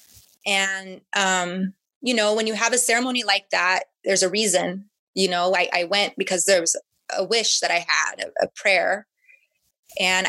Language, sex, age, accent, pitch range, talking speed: English, female, 20-39, American, 190-245 Hz, 180 wpm